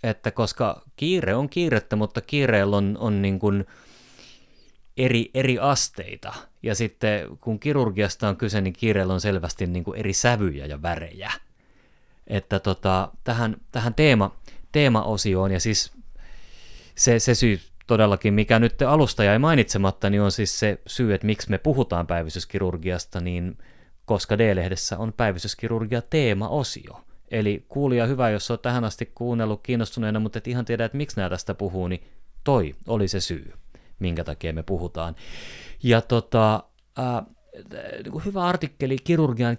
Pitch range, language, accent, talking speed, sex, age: 95-125 Hz, Finnish, native, 145 wpm, male, 30-49